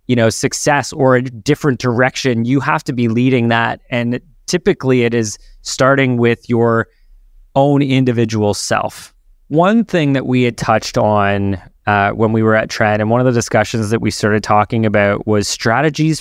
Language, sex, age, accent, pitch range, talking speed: English, male, 20-39, American, 110-135 Hz, 180 wpm